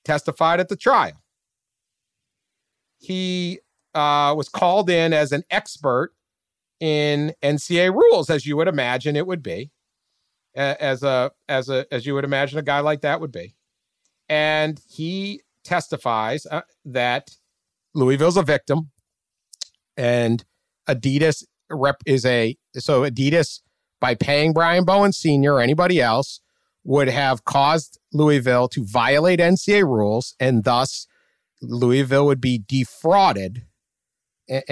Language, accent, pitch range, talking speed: English, American, 120-155 Hz, 125 wpm